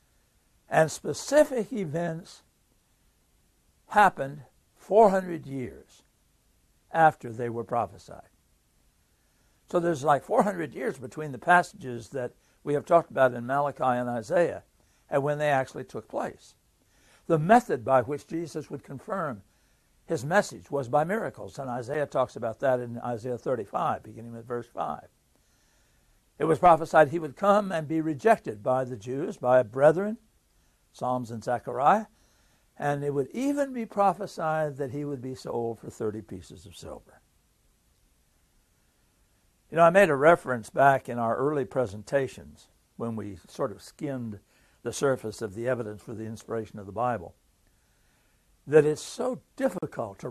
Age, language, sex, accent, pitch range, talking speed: 60-79, English, male, American, 120-160 Hz, 145 wpm